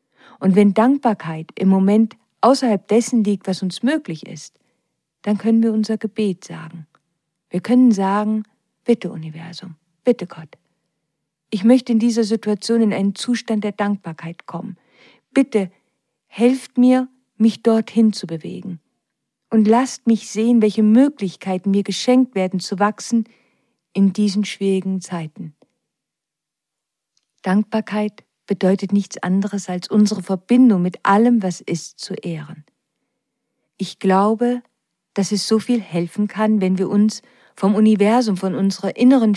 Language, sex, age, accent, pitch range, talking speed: German, female, 50-69, German, 185-225 Hz, 135 wpm